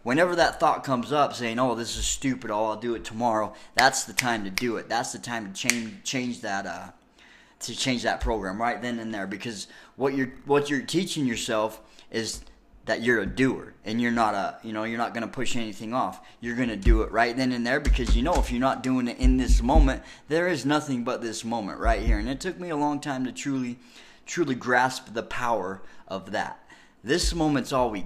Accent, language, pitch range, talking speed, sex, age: American, English, 115-140 Hz, 230 wpm, male, 20-39